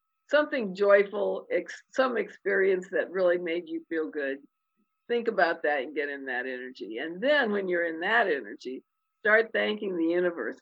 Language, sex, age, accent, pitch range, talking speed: English, female, 50-69, American, 165-260 Hz, 165 wpm